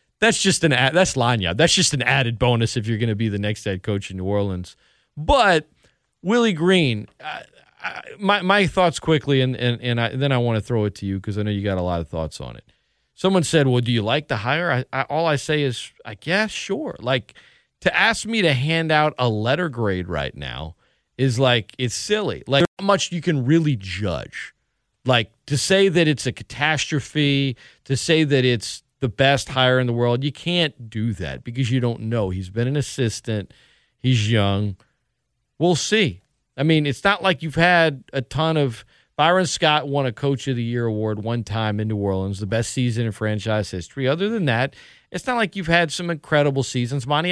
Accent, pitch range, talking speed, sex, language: American, 115-160 Hz, 220 wpm, male, English